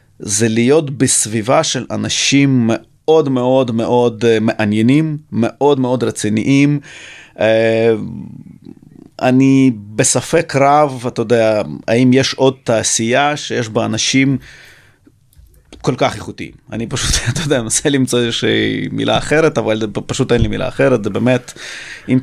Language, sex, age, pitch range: Hebrew, male, 30-49, 110-130 Hz